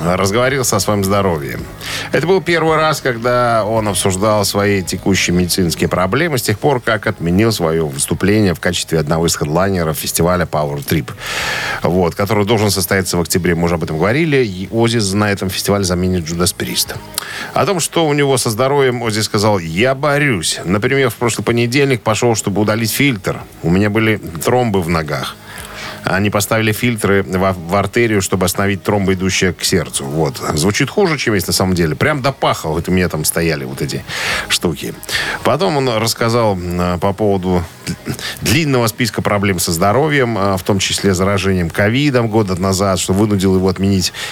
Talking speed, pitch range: 165 wpm, 95-115 Hz